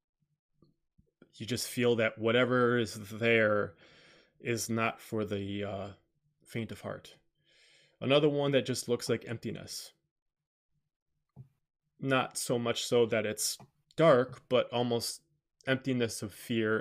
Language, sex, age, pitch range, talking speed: English, male, 20-39, 110-150 Hz, 120 wpm